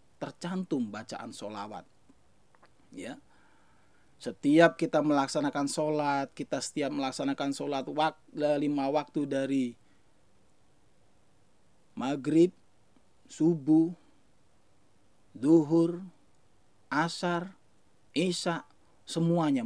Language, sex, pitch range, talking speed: Malay, male, 140-180 Hz, 65 wpm